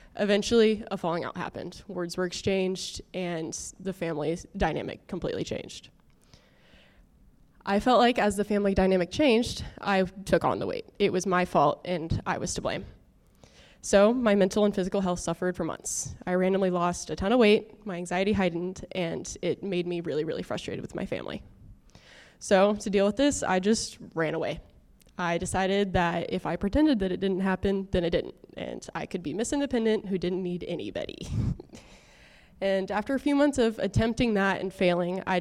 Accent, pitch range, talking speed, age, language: American, 180-210 Hz, 185 wpm, 20-39, English